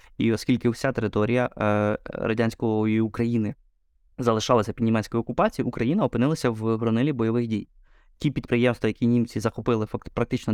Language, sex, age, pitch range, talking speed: Ukrainian, male, 20-39, 110-125 Hz, 130 wpm